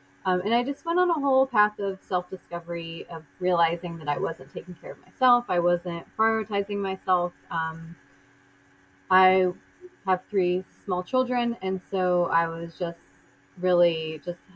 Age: 30-49